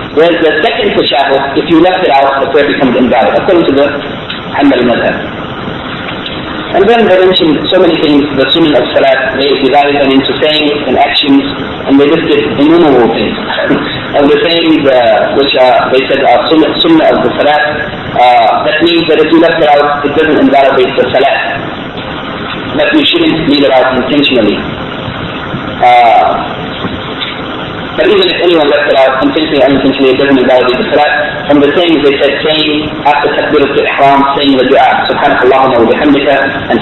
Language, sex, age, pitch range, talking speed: English, male, 40-59, 135-160 Hz, 170 wpm